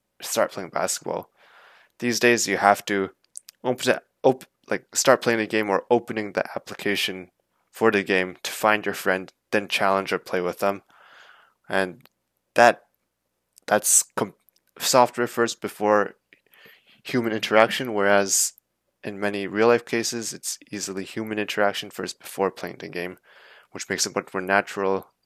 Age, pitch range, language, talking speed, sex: 20-39, 95-110 Hz, English, 145 wpm, male